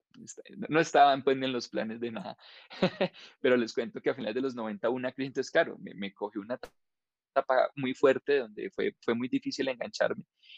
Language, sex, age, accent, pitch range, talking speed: Spanish, male, 20-39, Colombian, 115-140 Hz, 200 wpm